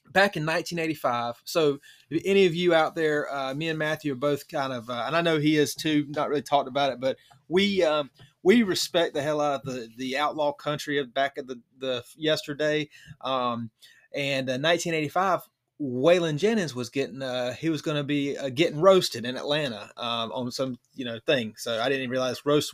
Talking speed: 210 wpm